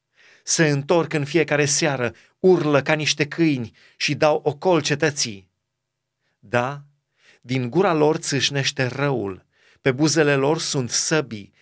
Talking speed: 125 wpm